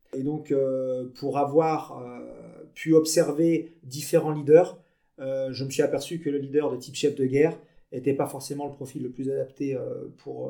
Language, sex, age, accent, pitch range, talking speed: French, male, 30-49, French, 135-175 Hz, 190 wpm